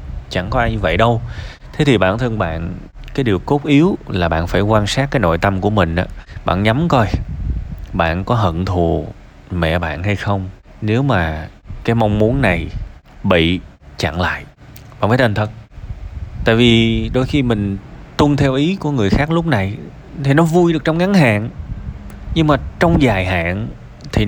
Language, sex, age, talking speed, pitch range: Vietnamese, male, 20-39, 190 wpm, 90-145 Hz